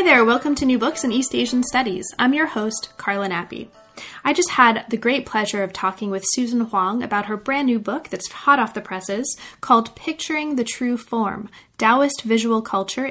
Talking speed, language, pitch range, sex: 205 wpm, English, 205-250 Hz, female